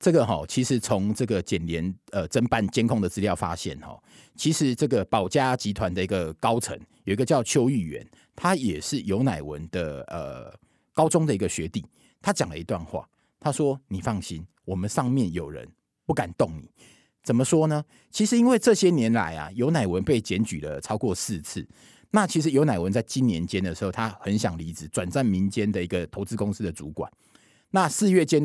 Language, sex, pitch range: Chinese, male, 95-150 Hz